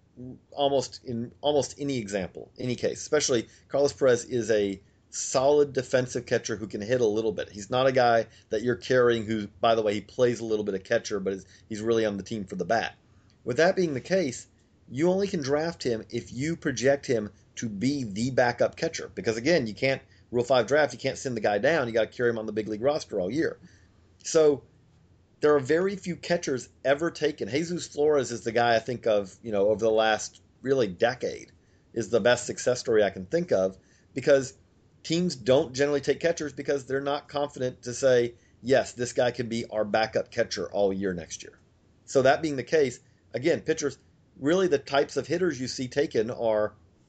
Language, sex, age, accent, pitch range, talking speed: English, male, 40-59, American, 110-140 Hz, 210 wpm